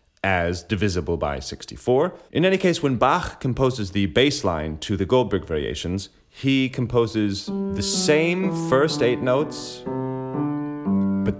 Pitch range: 85-130 Hz